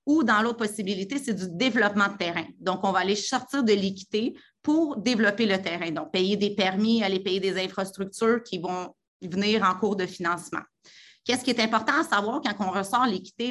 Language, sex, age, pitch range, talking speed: French, female, 30-49, 190-230 Hz, 200 wpm